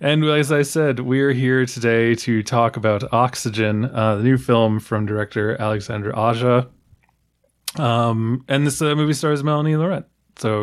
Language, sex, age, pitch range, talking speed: English, male, 20-39, 115-155 Hz, 160 wpm